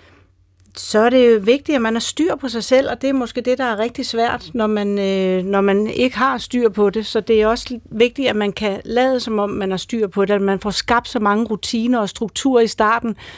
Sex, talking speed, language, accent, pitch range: female, 255 wpm, Danish, native, 190-225 Hz